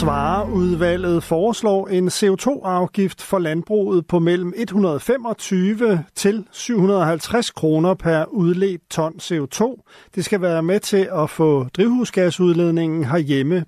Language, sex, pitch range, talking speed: Danish, male, 165-205 Hz, 110 wpm